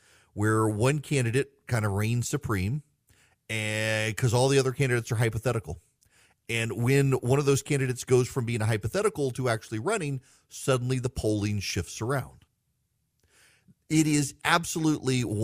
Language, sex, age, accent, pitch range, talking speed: English, male, 40-59, American, 100-130 Hz, 140 wpm